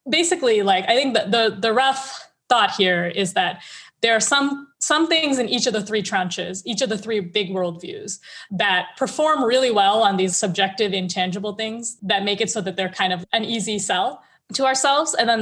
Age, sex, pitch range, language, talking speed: 20-39, female, 185-230 Hz, English, 205 wpm